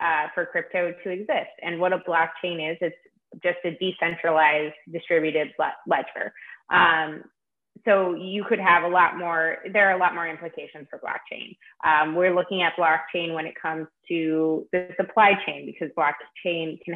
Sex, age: female, 20-39